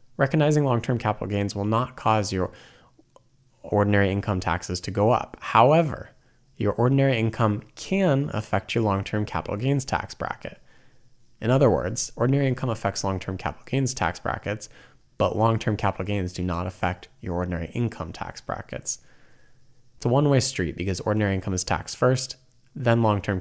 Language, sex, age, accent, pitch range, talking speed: English, male, 20-39, American, 90-120 Hz, 155 wpm